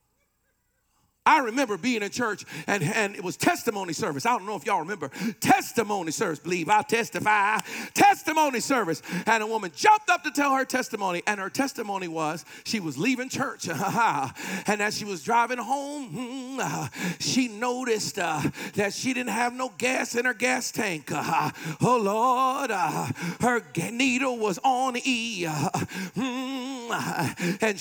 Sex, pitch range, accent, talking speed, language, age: male, 205-265 Hz, American, 145 wpm, English, 40-59